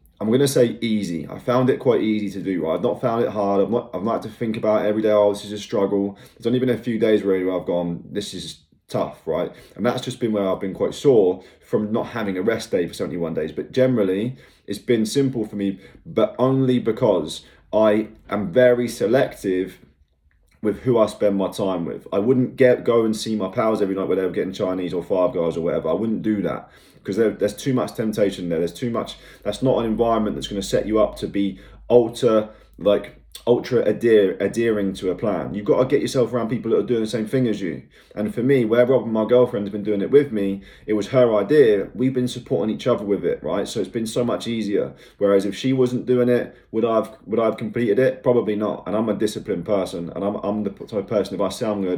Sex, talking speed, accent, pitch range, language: male, 245 wpm, British, 100-120 Hz, English